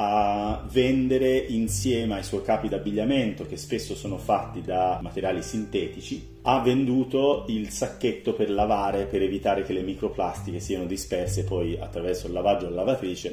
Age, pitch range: 40-59, 100-130 Hz